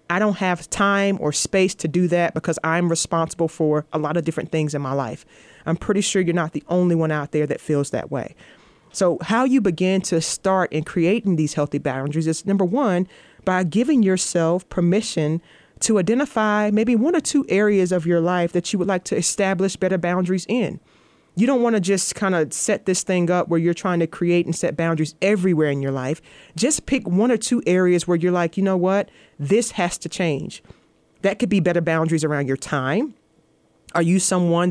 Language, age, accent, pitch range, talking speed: English, 30-49, American, 165-195 Hz, 210 wpm